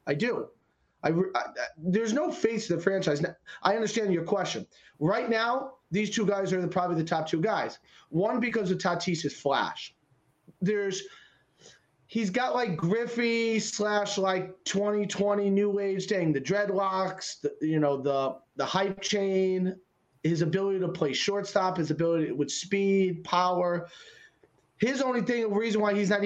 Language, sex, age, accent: English, male, 30-49, American